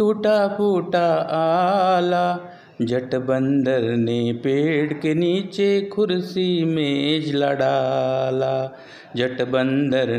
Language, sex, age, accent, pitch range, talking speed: Marathi, male, 50-69, native, 135-205 Hz, 80 wpm